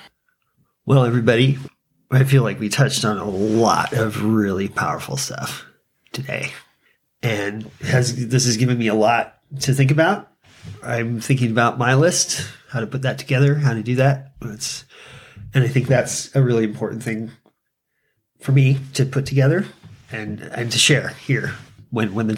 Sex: male